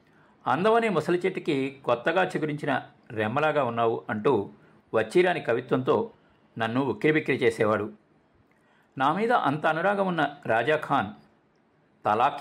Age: 50-69